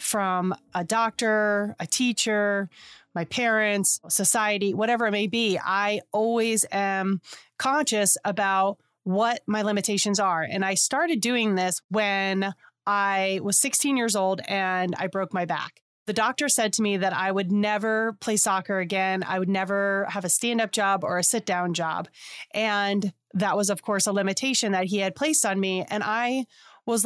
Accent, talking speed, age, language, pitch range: American, 175 wpm, 30-49, English, 190-220 Hz